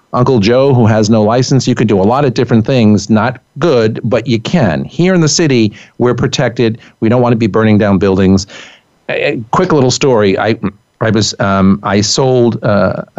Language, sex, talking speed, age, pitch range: English, male, 200 wpm, 50-69, 100-125 Hz